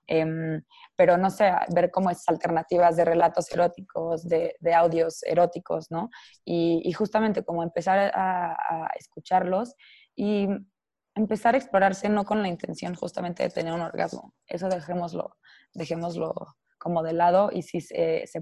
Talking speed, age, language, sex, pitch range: 155 wpm, 20-39, Spanish, female, 165-185 Hz